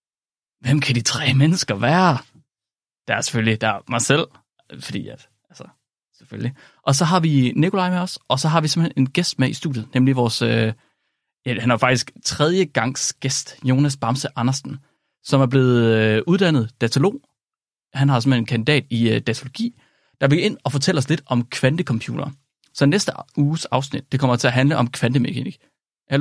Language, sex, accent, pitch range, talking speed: Danish, male, native, 125-155 Hz, 175 wpm